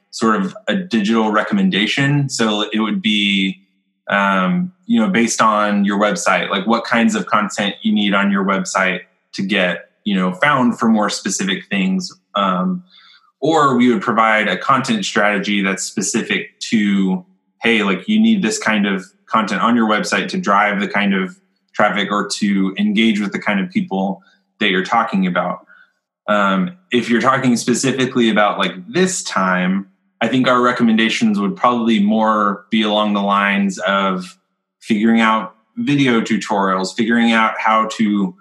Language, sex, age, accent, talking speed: English, male, 20-39, American, 160 wpm